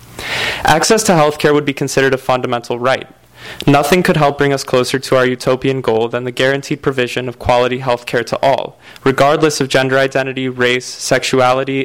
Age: 20-39